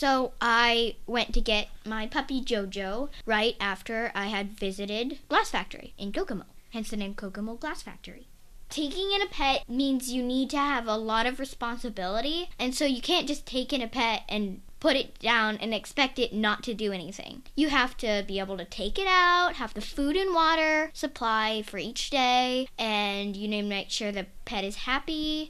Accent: American